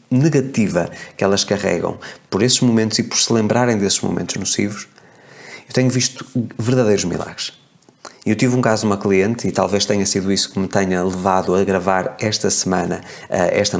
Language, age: Portuguese, 20-39